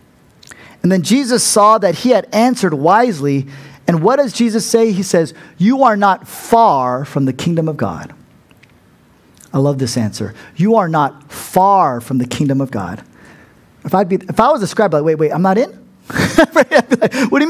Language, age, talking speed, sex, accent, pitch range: English, 40-59, 200 wpm, male, American, 150-225 Hz